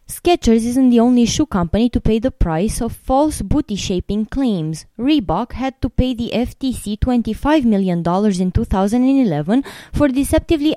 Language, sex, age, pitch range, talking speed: English, female, 20-39, 190-265 Hz, 145 wpm